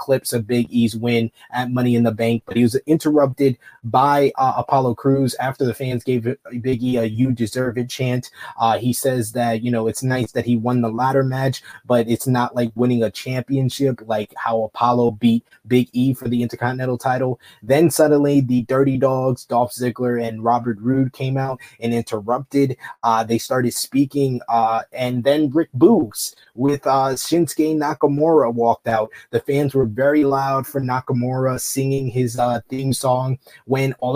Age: 20-39